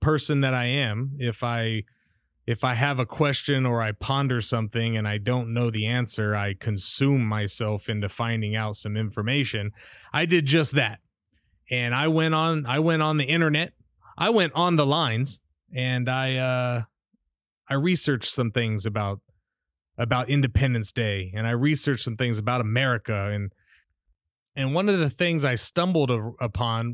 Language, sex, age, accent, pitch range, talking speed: English, male, 30-49, American, 110-140 Hz, 165 wpm